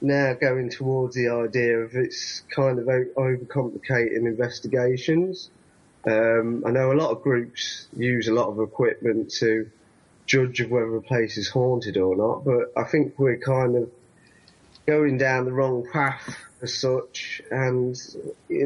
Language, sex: English, male